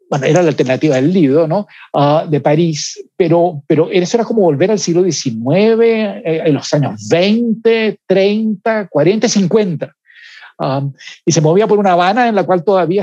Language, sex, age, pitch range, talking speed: Spanish, male, 60-79, 150-210 Hz, 175 wpm